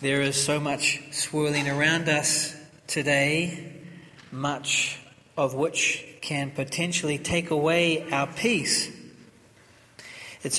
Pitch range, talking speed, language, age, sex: 135-165 Hz, 100 wpm, English, 40-59, male